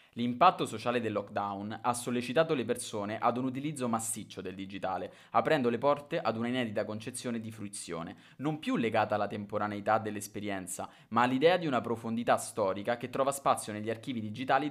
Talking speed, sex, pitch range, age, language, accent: 165 wpm, male, 105-135 Hz, 20-39, Italian, native